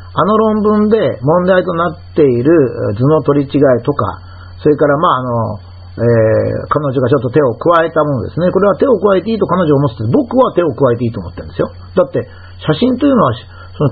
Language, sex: Japanese, male